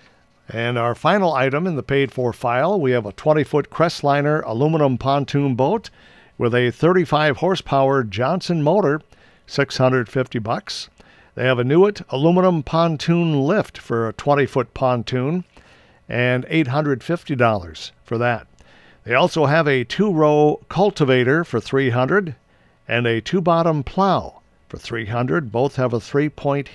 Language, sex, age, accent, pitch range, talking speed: English, male, 50-69, American, 120-160 Hz, 125 wpm